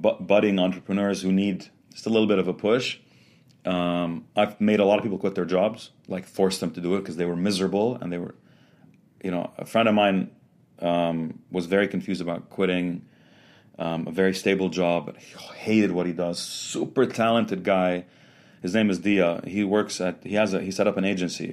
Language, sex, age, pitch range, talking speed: English, male, 30-49, 90-120 Hz, 210 wpm